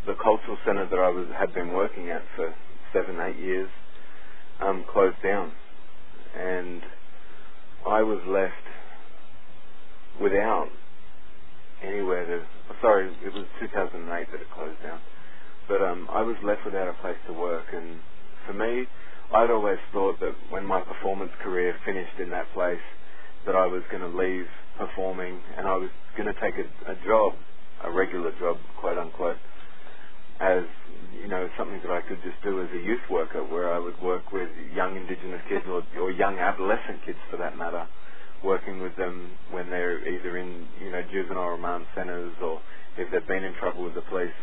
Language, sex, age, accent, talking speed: English, male, 30-49, Australian, 175 wpm